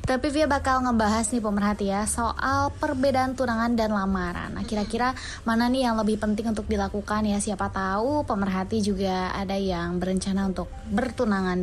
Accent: native